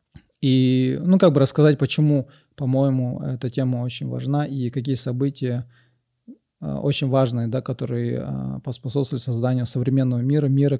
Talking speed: 140 wpm